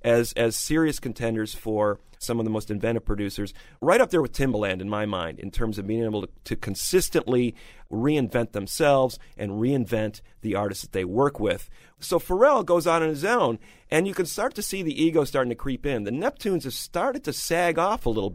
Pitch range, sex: 115-150 Hz, male